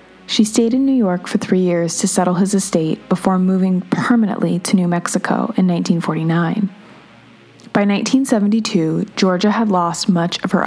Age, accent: 20-39, American